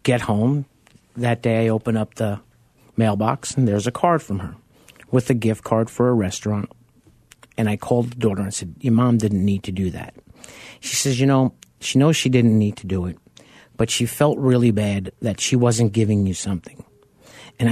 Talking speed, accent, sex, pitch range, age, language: 205 wpm, American, male, 110-135 Hz, 50-69, English